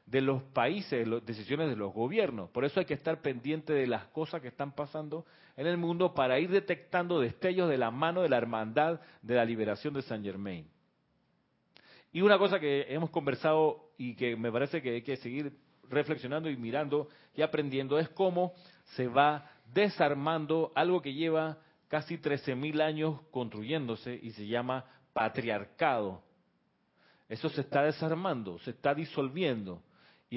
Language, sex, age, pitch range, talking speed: Spanish, male, 40-59, 130-165 Hz, 165 wpm